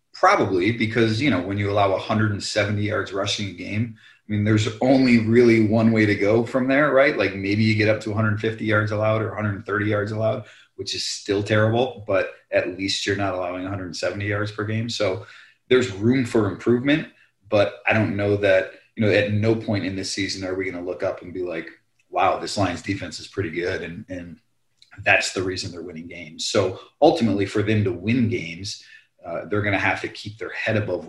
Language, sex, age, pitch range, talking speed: English, male, 30-49, 95-110 Hz, 210 wpm